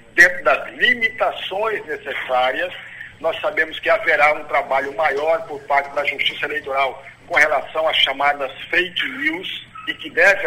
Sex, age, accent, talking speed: male, 60-79, Brazilian, 145 wpm